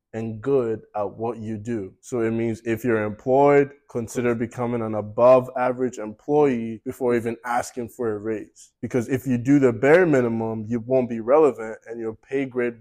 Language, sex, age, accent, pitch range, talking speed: English, male, 20-39, American, 110-130 Hz, 180 wpm